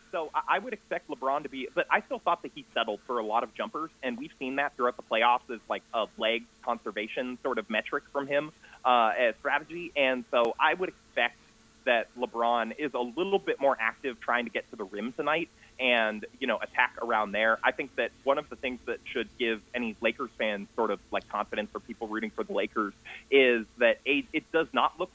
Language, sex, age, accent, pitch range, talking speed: English, male, 30-49, American, 110-140 Hz, 225 wpm